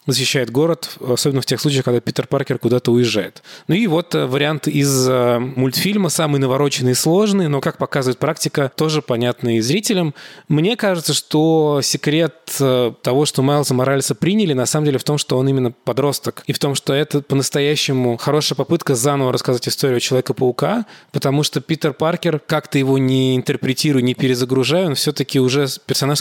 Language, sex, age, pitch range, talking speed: Russian, male, 20-39, 130-155 Hz, 165 wpm